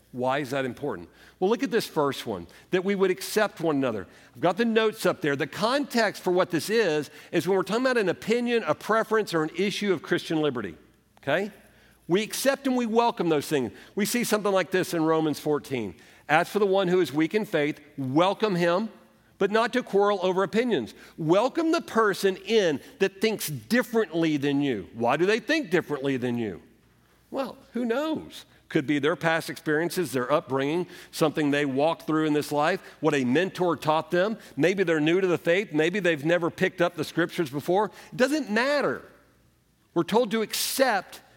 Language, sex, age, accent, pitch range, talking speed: English, male, 50-69, American, 150-205 Hz, 195 wpm